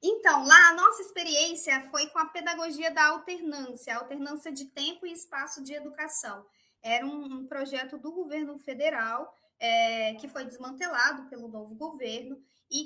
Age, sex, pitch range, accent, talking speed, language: 20-39, female, 260-345 Hz, Brazilian, 155 wpm, Portuguese